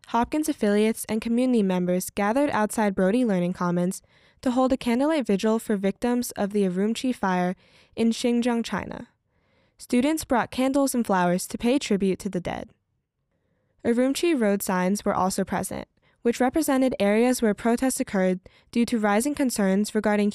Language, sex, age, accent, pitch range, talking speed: English, female, 10-29, American, 195-250 Hz, 155 wpm